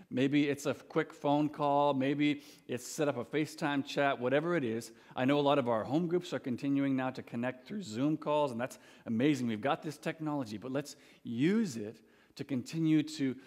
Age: 50-69